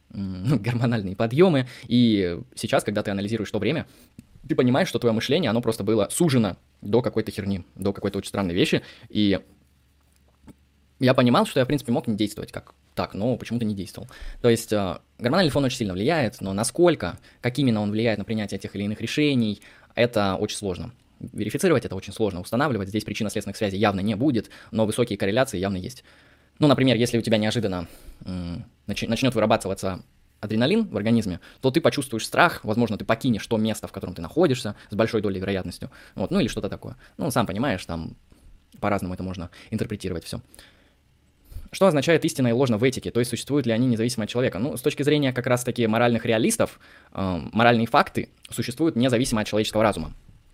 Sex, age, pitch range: male, 20-39, 100-120 Hz